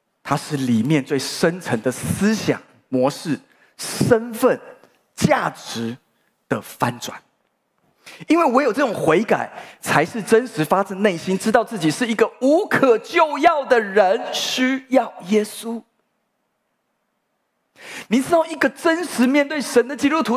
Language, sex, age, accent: Chinese, male, 30-49, native